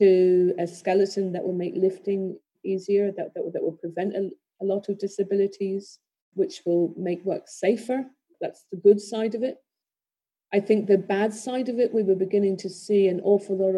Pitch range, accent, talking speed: 185-205 Hz, British, 190 wpm